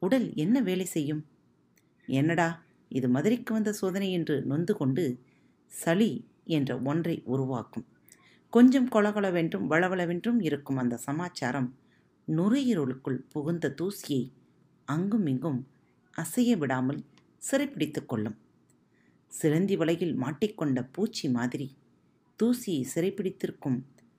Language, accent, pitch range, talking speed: Tamil, native, 130-205 Hz, 95 wpm